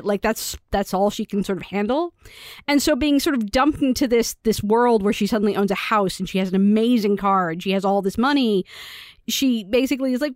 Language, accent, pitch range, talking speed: English, American, 195-240 Hz, 240 wpm